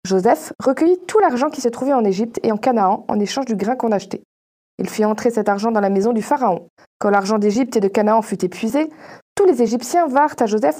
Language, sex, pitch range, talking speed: French, female, 215-275 Hz, 235 wpm